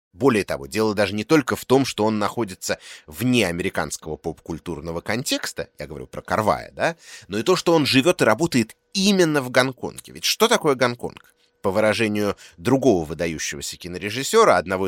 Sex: male